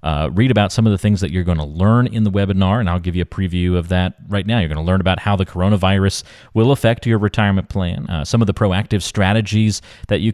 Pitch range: 85-105 Hz